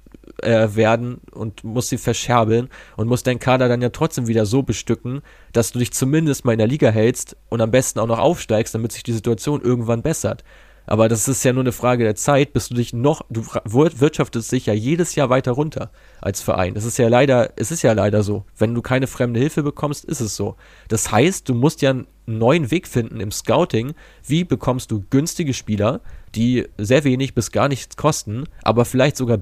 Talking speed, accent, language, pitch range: 210 wpm, German, German, 110-135 Hz